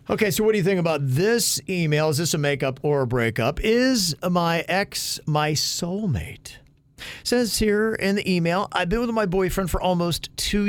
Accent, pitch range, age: American, 135-195 Hz, 40-59